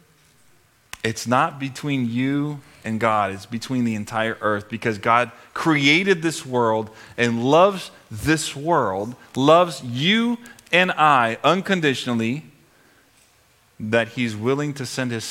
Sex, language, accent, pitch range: male, English, American, 110-145 Hz